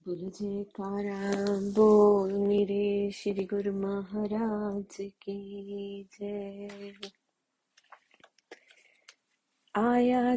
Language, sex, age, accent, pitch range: Hindi, female, 30-49, native, 210-280 Hz